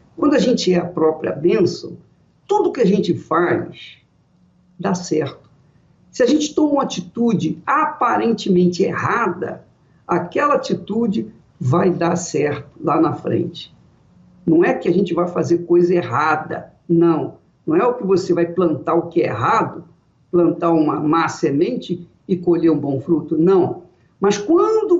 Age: 50-69